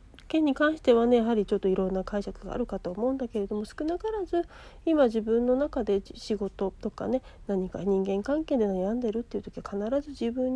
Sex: female